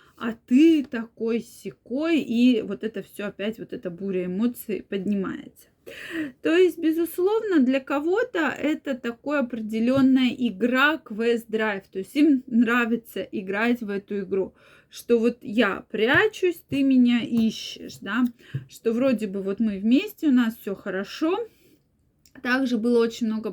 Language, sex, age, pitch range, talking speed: Russian, female, 20-39, 215-280 Hz, 140 wpm